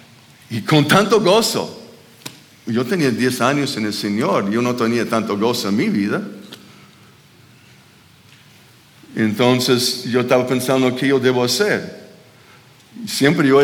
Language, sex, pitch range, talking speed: Spanish, male, 105-135 Hz, 130 wpm